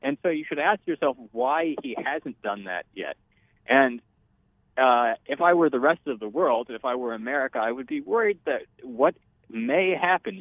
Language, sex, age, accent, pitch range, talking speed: English, male, 40-59, American, 115-140 Hz, 195 wpm